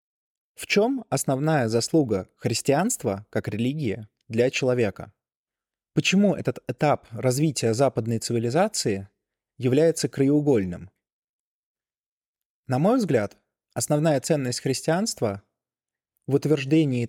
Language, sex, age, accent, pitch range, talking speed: Russian, male, 20-39, native, 115-155 Hz, 90 wpm